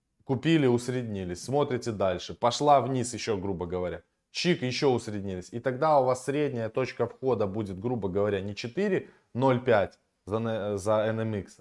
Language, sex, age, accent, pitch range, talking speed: Russian, male, 20-39, native, 105-140 Hz, 135 wpm